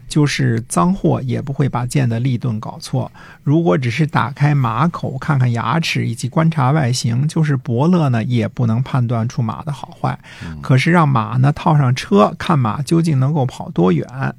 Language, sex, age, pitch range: Chinese, male, 50-69, 120-155 Hz